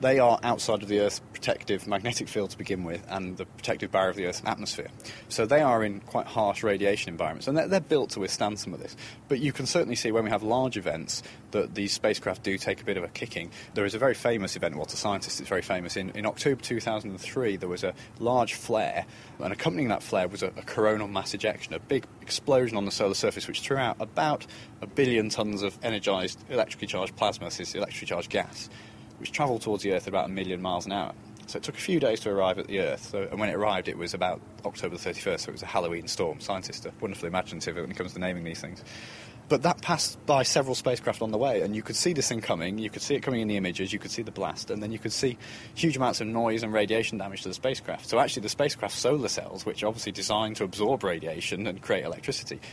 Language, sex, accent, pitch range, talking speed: English, male, British, 100-120 Hz, 255 wpm